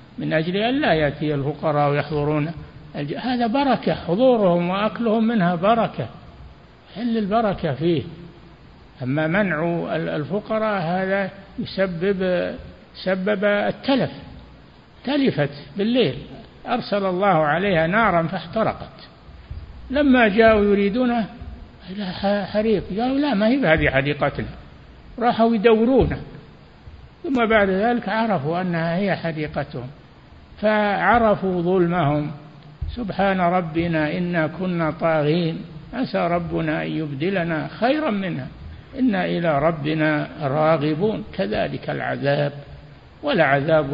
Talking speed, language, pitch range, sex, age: 95 wpm, Arabic, 150-215 Hz, male, 60-79